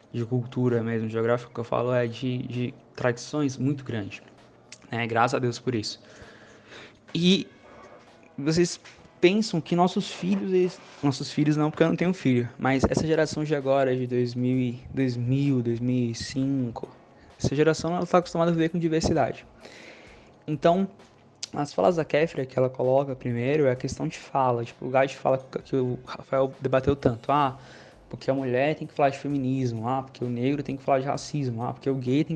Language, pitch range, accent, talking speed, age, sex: Portuguese, 125-150 Hz, Brazilian, 180 wpm, 20-39, male